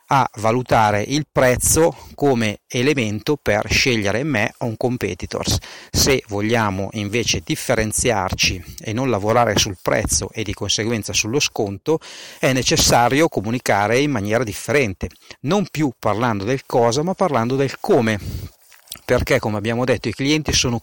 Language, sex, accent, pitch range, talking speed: Italian, male, native, 105-135 Hz, 140 wpm